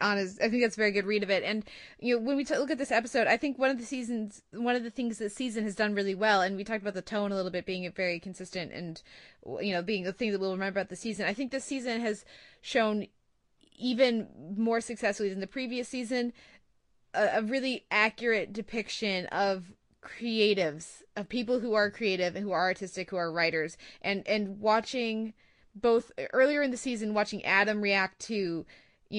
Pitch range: 195-235 Hz